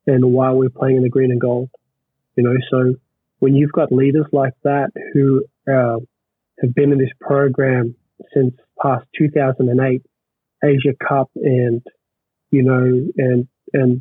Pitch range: 130-145 Hz